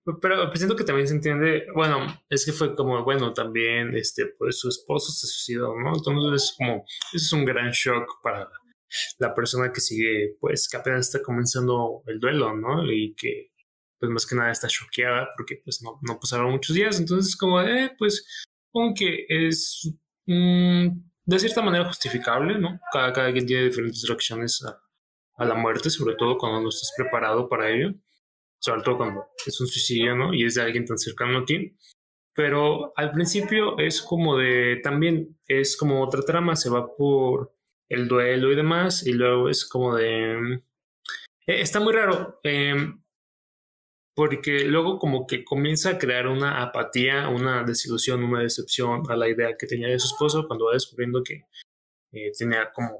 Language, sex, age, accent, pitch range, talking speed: Spanish, male, 20-39, Mexican, 120-170 Hz, 180 wpm